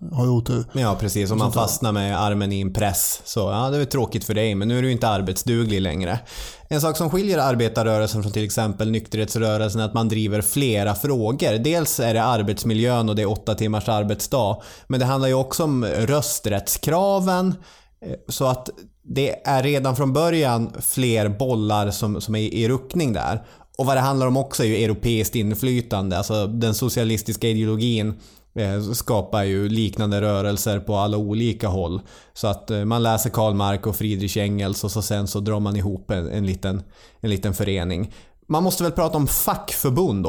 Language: Swedish